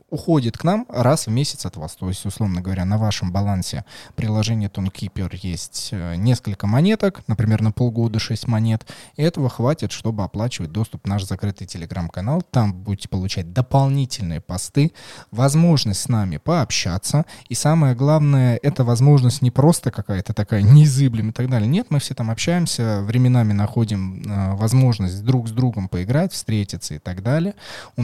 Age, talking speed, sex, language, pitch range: 20-39, 155 wpm, male, Russian, 95-130 Hz